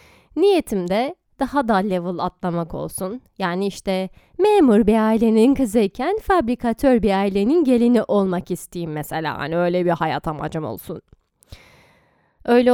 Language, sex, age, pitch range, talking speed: Turkish, female, 10-29, 185-255 Hz, 125 wpm